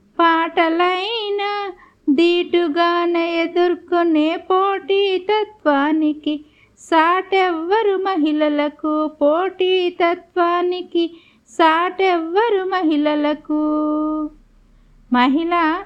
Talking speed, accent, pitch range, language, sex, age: 45 wpm, native, 310-370 Hz, Telugu, female, 50-69